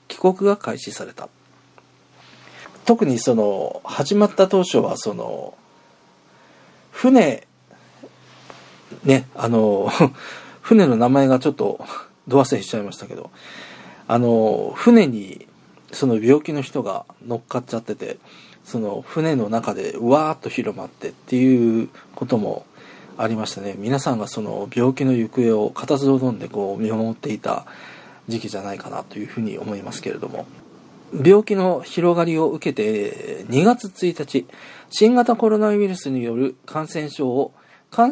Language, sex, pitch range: Japanese, male, 125-185 Hz